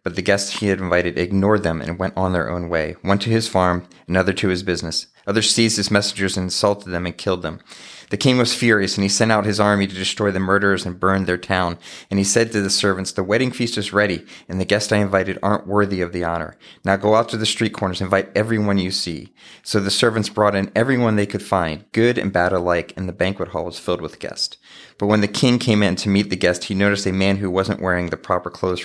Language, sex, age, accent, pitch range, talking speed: English, male, 30-49, American, 95-105 Hz, 260 wpm